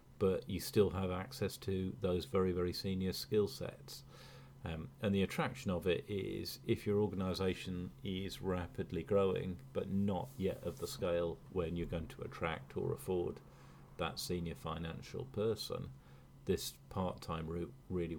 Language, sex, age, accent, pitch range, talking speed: English, male, 40-59, British, 80-95 Hz, 150 wpm